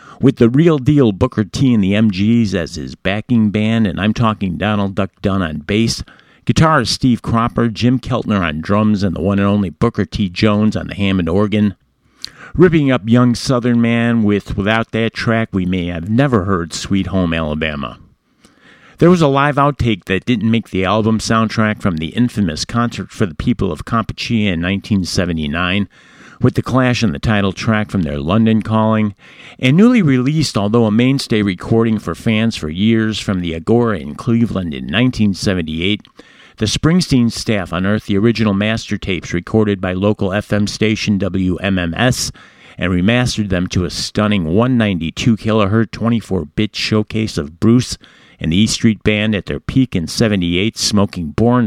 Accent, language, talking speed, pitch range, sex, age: American, English, 170 wpm, 95-115 Hz, male, 50-69